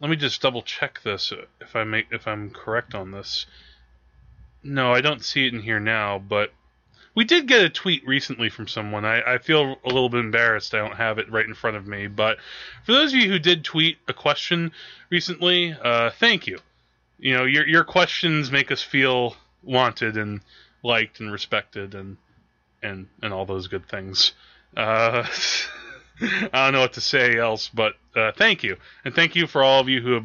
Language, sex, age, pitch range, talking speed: English, male, 20-39, 110-145 Hz, 200 wpm